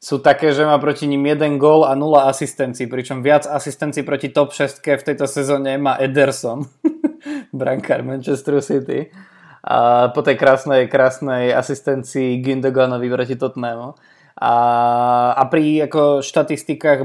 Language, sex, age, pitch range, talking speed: Slovak, male, 20-39, 120-145 Hz, 135 wpm